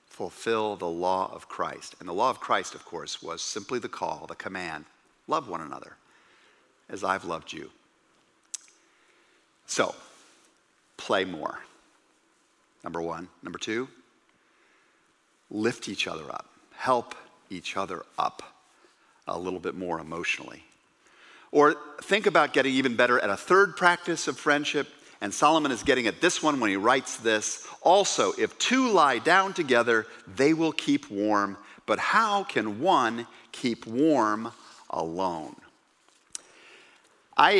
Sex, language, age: male, English, 50-69